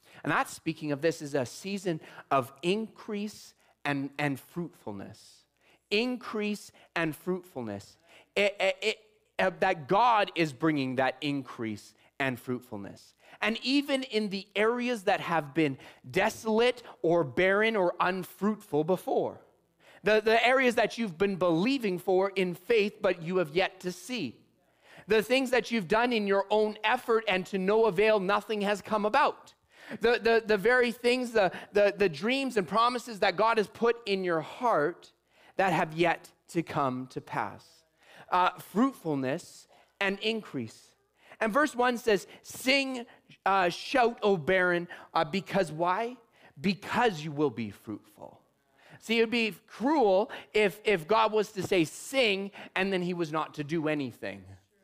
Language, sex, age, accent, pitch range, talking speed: English, male, 30-49, American, 165-220 Hz, 155 wpm